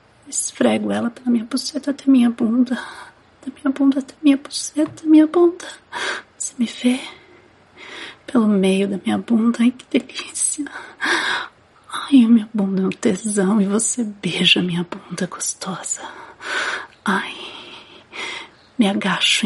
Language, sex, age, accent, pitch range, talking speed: Portuguese, female, 30-49, Brazilian, 220-275 Hz, 135 wpm